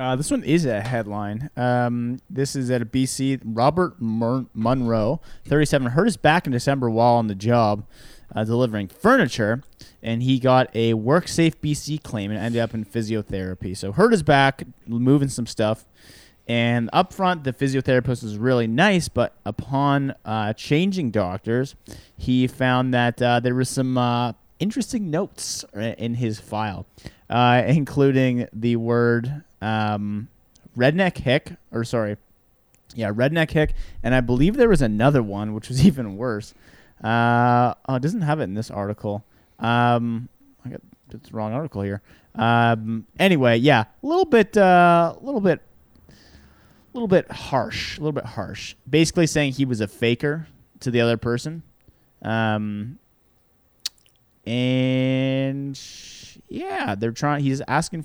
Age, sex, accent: 30-49, male, American